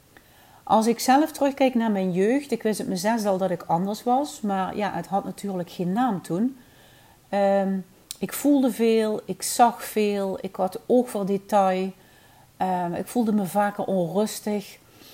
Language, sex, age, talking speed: Dutch, female, 40-59, 165 wpm